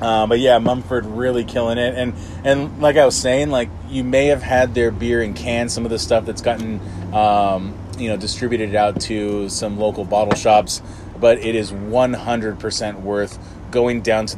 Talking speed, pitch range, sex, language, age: 190 wpm, 105-120 Hz, male, English, 20-39